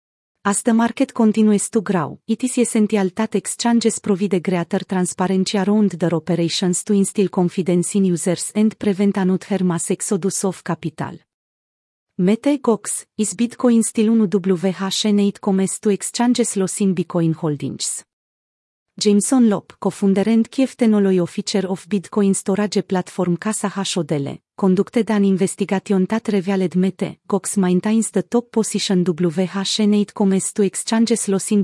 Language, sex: Romanian, female